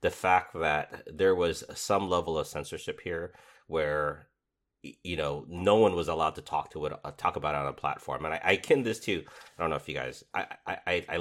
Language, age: English, 30-49